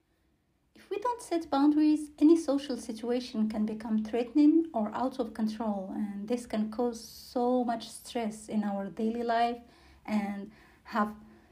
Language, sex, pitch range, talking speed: English, female, 215-250 Hz, 135 wpm